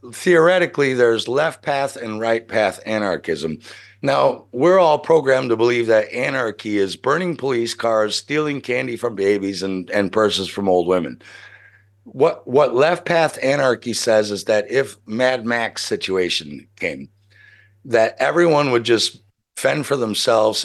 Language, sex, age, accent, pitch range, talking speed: English, male, 60-79, American, 100-130 Hz, 145 wpm